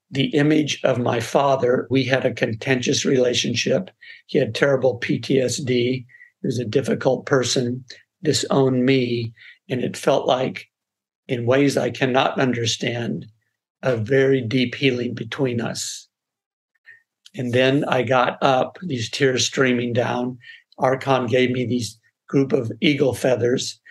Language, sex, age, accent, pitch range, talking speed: English, male, 60-79, American, 120-130 Hz, 135 wpm